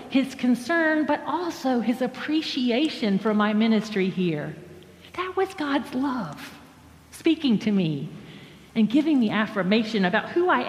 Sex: female